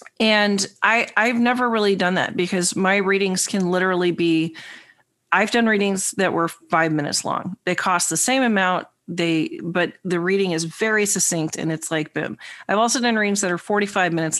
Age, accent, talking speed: 40-59, American, 190 wpm